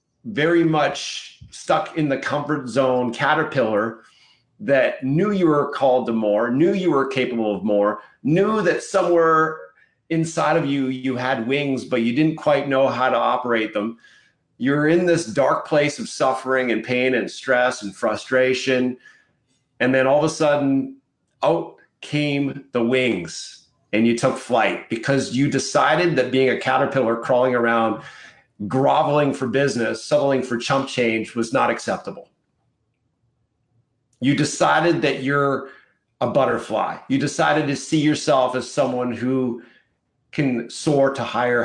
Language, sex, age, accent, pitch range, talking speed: English, male, 40-59, American, 120-150 Hz, 150 wpm